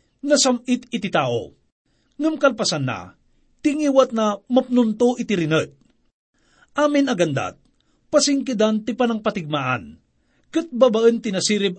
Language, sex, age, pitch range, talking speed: English, male, 50-69, 185-255 Hz, 95 wpm